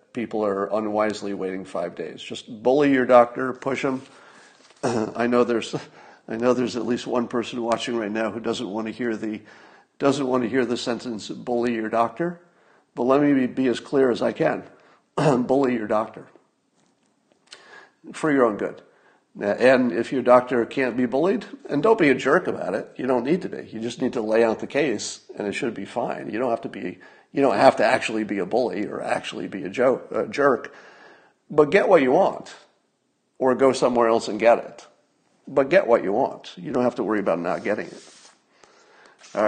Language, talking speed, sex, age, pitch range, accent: English, 210 wpm, male, 50-69, 115-145 Hz, American